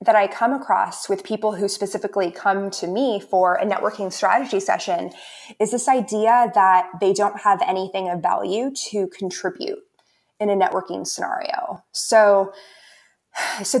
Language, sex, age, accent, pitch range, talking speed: English, female, 20-39, American, 190-230 Hz, 150 wpm